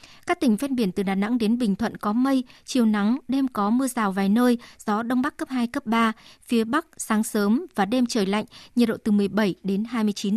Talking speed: 235 wpm